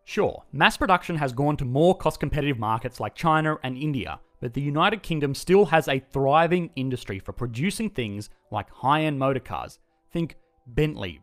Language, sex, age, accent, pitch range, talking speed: English, male, 30-49, Australian, 115-170 Hz, 160 wpm